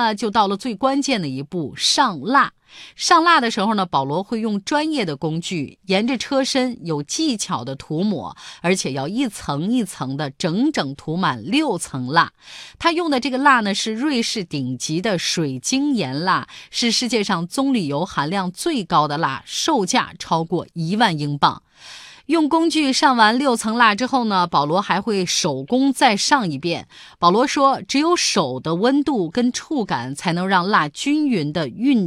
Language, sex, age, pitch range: Chinese, female, 30-49, 170-260 Hz